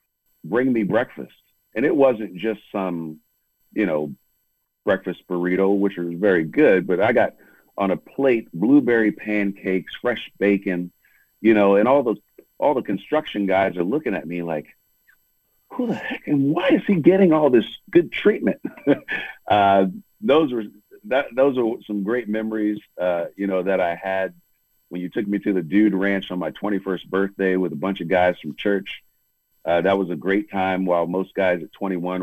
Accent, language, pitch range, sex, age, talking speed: American, English, 85-100 Hz, male, 50-69, 180 wpm